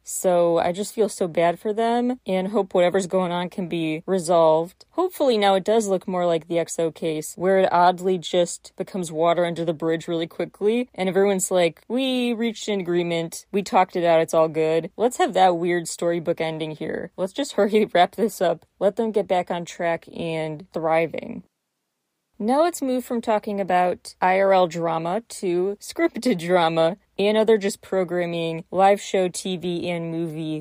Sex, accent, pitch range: female, American, 170-220 Hz